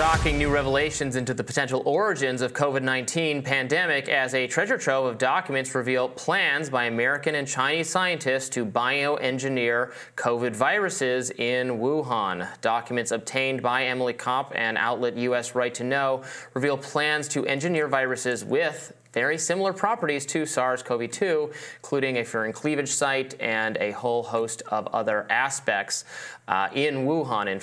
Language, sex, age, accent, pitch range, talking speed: English, male, 30-49, American, 120-140 Hz, 150 wpm